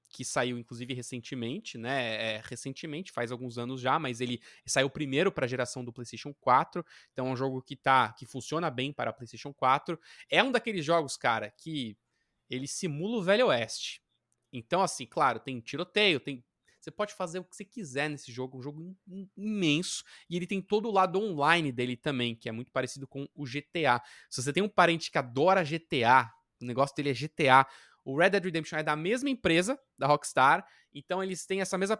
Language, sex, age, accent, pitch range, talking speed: Portuguese, male, 20-39, Brazilian, 125-170 Hz, 205 wpm